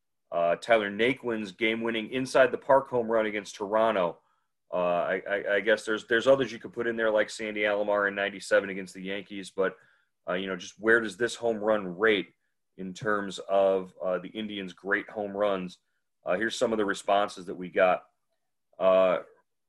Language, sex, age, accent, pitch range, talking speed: English, male, 30-49, American, 100-115 Hz, 190 wpm